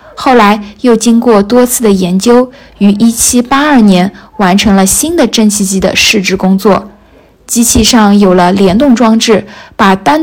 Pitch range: 205-245 Hz